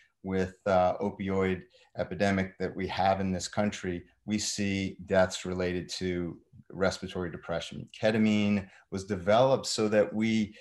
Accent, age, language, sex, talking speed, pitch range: American, 30-49, English, male, 130 wpm, 95-110 Hz